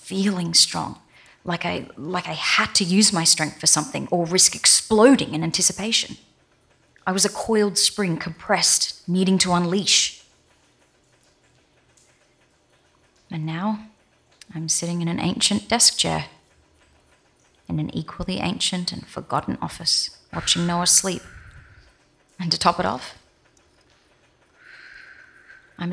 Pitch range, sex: 160-205 Hz, female